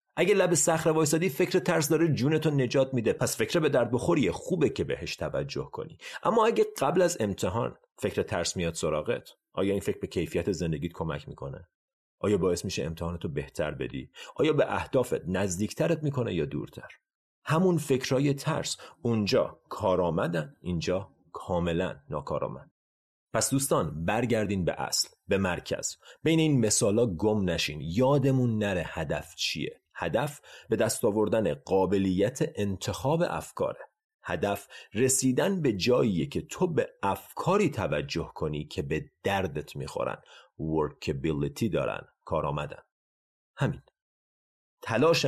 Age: 30-49